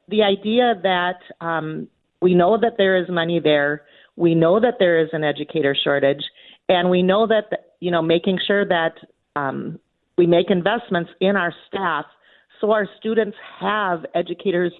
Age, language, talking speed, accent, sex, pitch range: 40-59, English, 160 wpm, American, female, 160-200 Hz